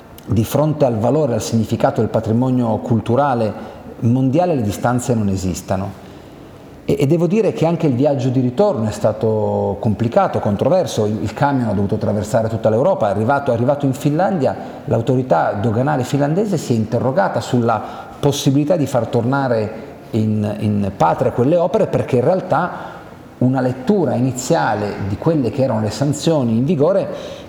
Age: 40-59